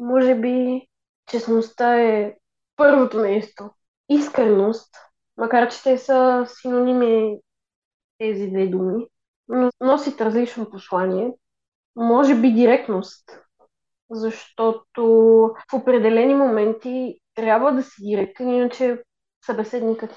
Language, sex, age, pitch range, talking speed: Bulgarian, female, 20-39, 215-250 Hz, 95 wpm